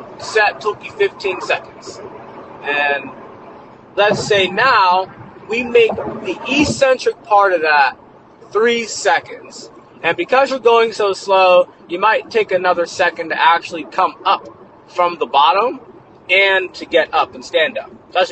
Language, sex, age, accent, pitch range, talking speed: English, male, 30-49, American, 150-255 Hz, 145 wpm